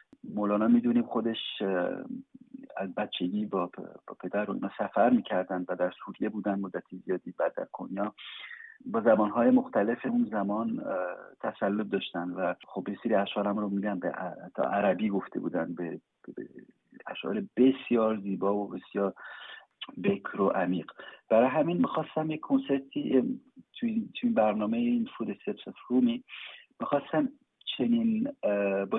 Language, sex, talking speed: Persian, male, 125 wpm